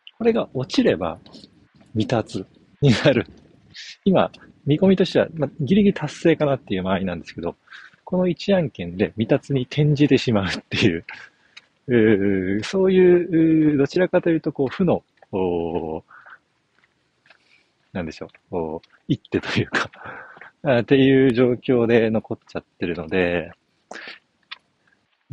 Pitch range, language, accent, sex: 100-145 Hz, Japanese, native, male